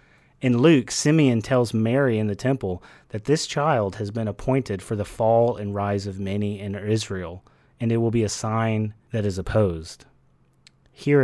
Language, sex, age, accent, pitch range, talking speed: English, male, 30-49, American, 100-125 Hz, 175 wpm